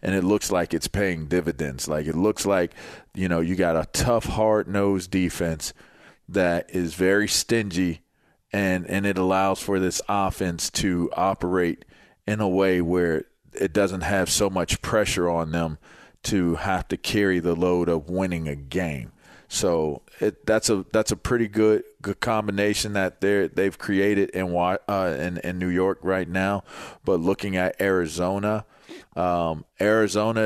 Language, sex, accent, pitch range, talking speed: English, male, American, 85-100 Hz, 165 wpm